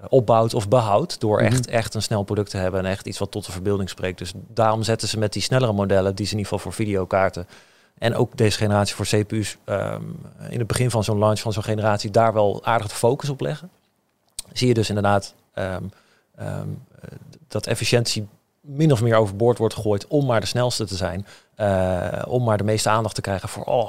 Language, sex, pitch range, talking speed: Dutch, male, 100-120 Hz, 220 wpm